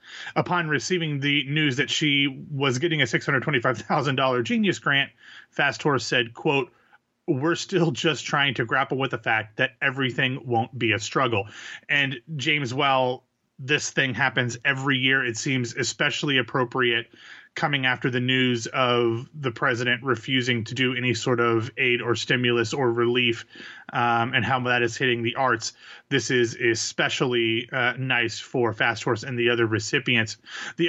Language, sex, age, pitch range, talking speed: English, male, 30-49, 120-155 Hz, 160 wpm